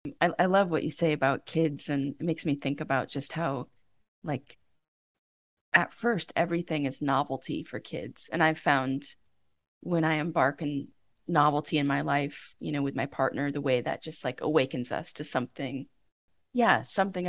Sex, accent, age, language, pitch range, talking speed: female, American, 20-39, English, 140-175 Hz, 175 wpm